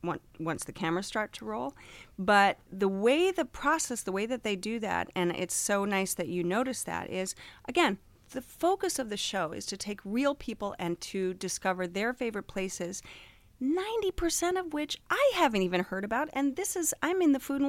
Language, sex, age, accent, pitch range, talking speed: English, female, 40-59, American, 180-255 Hz, 200 wpm